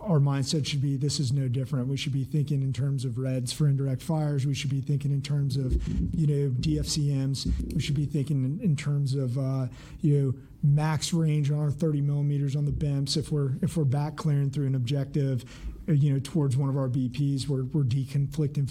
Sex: male